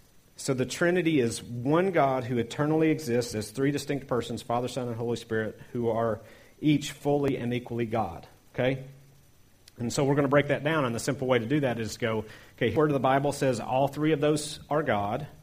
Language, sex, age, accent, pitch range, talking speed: English, male, 40-59, American, 115-140 Hz, 215 wpm